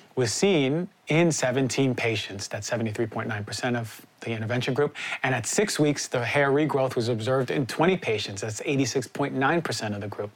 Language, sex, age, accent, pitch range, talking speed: English, male, 30-49, American, 120-145 Hz, 160 wpm